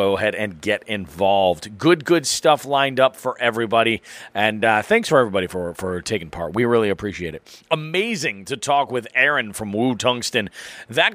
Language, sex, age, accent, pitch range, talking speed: English, male, 30-49, American, 110-165 Hz, 185 wpm